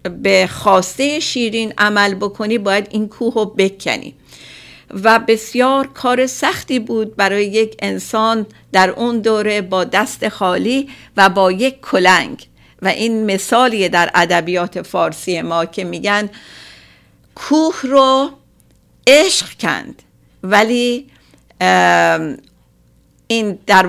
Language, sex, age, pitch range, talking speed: Persian, female, 50-69, 185-240 Hz, 110 wpm